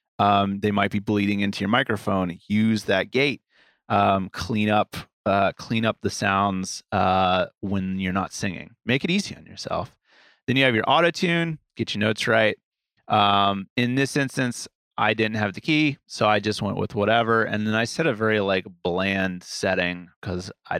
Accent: American